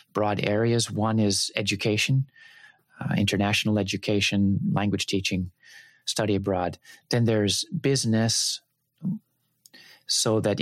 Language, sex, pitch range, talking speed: English, male, 95-120 Hz, 95 wpm